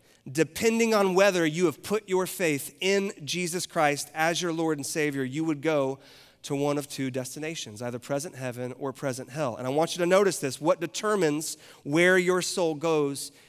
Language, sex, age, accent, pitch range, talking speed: English, male, 30-49, American, 135-175 Hz, 190 wpm